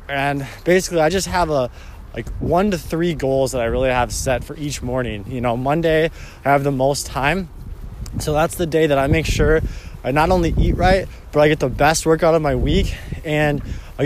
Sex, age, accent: male, 20-39, American